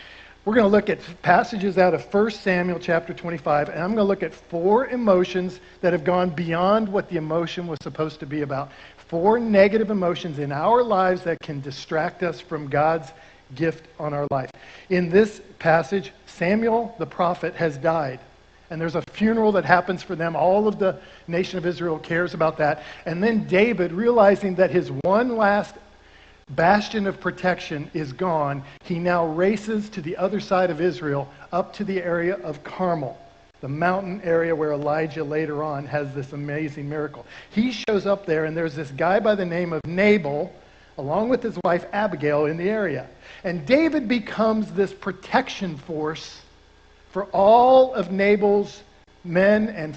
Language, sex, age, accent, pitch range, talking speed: English, male, 50-69, American, 155-200 Hz, 175 wpm